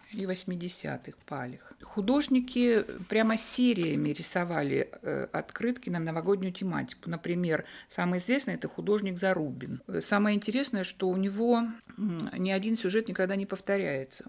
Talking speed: 120 wpm